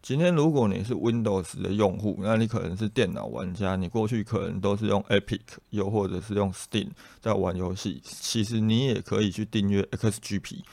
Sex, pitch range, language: male, 100-120 Hz, Chinese